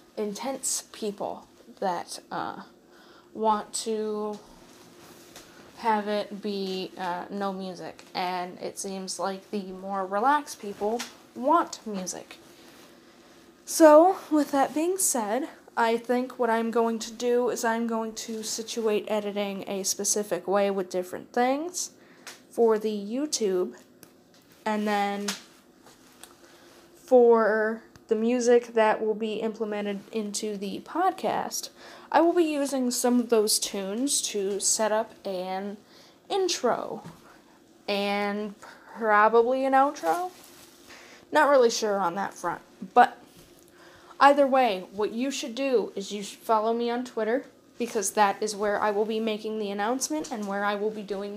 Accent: American